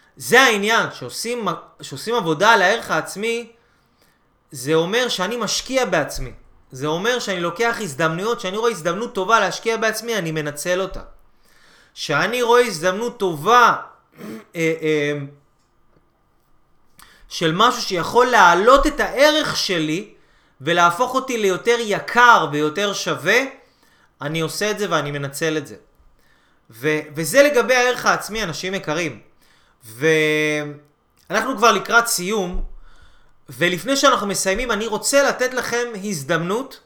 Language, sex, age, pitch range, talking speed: Hebrew, male, 30-49, 160-235 Hz, 115 wpm